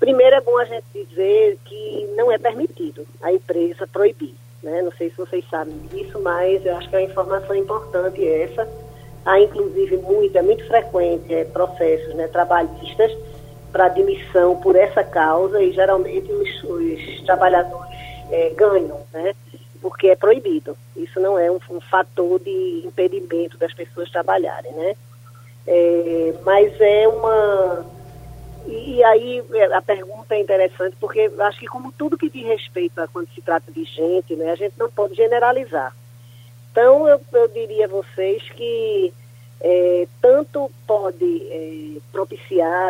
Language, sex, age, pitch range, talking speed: Portuguese, female, 20-39, 160-230 Hz, 150 wpm